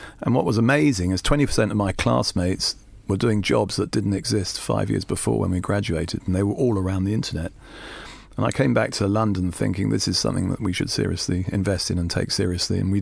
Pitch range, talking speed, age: 90-110 Hz, 225 wpm, 40-59